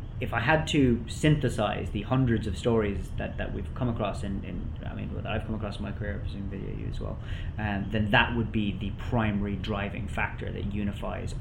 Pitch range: 100-120 Hz